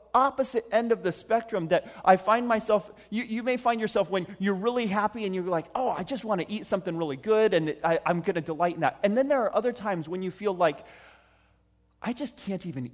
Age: 30-49